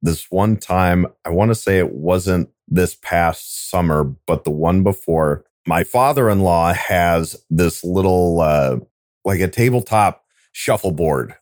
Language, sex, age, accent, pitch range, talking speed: English, male, 30-49, American, 75-105 Hz, 135 wpm